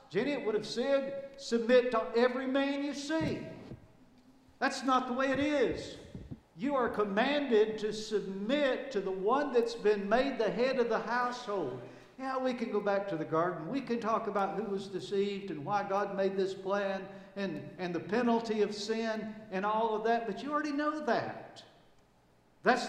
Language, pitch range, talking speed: English, 200-255 Hz, 185 wpm